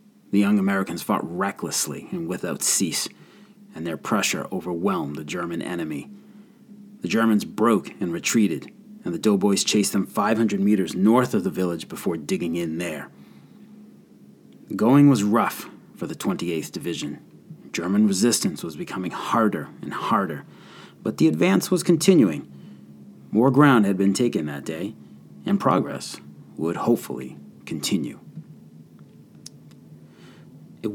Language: English